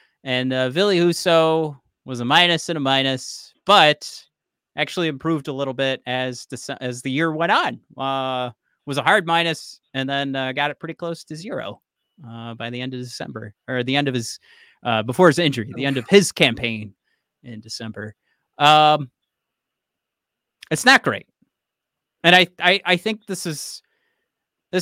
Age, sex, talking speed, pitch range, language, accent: 30-49, male, 165 wpm, 125-165 Hz, English, American